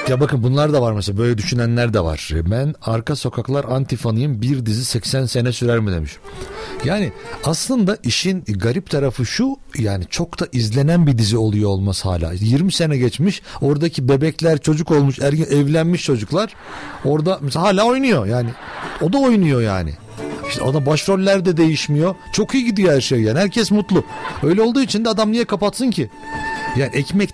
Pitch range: 115-180 Hz